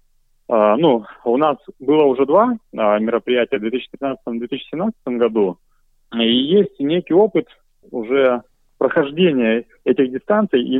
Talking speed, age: 115 wpm, 30-49